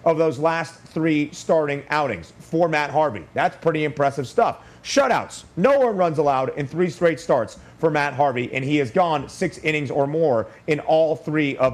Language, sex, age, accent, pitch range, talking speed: English, male, 30-49, American, 140-170 Hz, 190 wpm